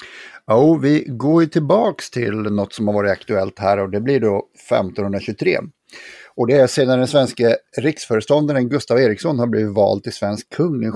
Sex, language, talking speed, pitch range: male, Swedish, 180 wpm, 105-135 Hz